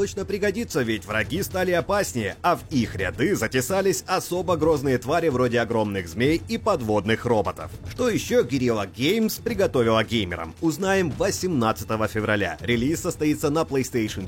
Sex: male